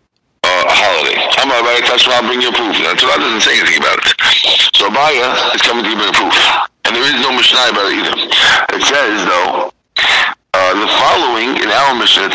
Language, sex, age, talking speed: English, male, 60-79, 210 wpm